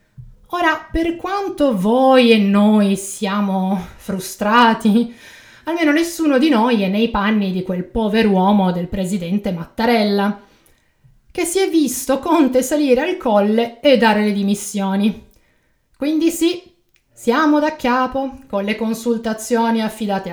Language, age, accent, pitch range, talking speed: Italian, 30-49, native, 200-265 Hz, 125 wpm